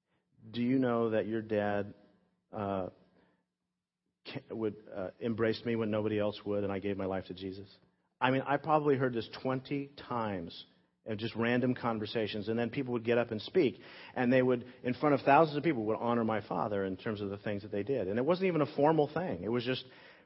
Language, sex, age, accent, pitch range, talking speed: English, male, 40-59, American, 110-145 Hz, 215 wpm